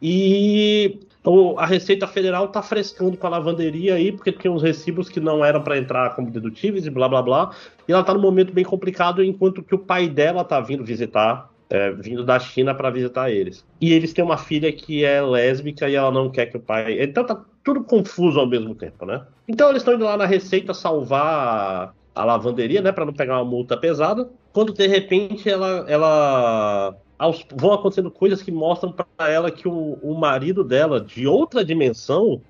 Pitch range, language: 125-185 Hz, Portuguese